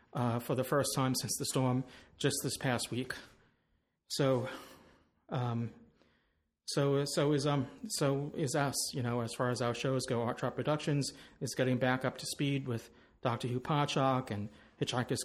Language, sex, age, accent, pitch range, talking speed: English, male, 40-59, American, 125-155 Hz, 175 wpm